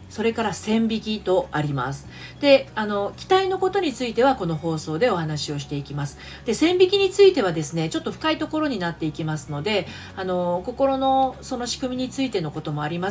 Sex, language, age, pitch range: female, Japanese, 40-59, 160-250 Hz